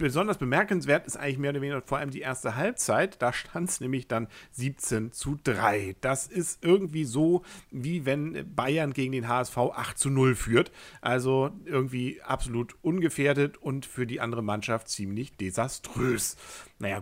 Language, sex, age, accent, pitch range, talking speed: German, male, 50-69, German, 115-150 Hz, 160 wpm